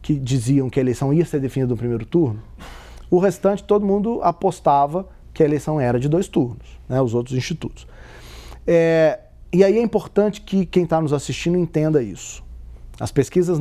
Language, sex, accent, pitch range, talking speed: Portuguese, male, Brazilian, 130-175 Hz, 175 wpm